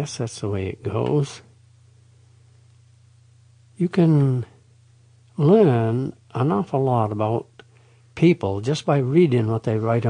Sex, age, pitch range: male, 60-79, 115-150 Hz